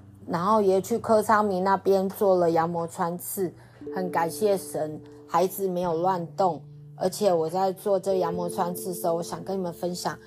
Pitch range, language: 165-200 Hz, Chinese